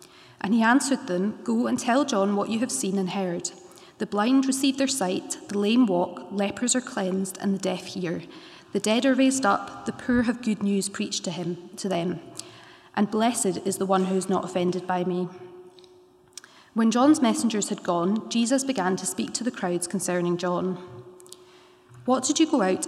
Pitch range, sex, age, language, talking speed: 185-250 Hz, female, 30-49, English, 190 wpm